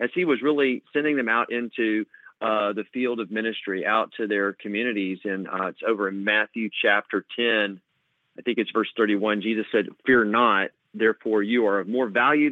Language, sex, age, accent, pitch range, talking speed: English, male, 40-59, American, 115-145 Hz, 190 wpm